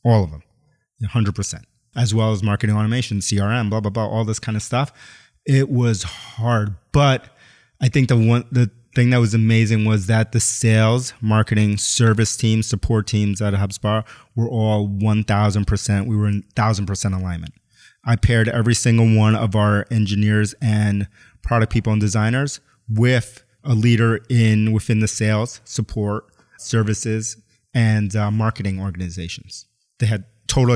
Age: 30-49